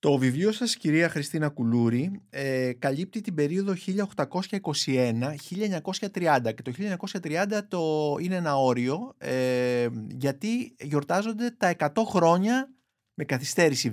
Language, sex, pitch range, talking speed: Greek, male, 120-185 Hz, 110 wpm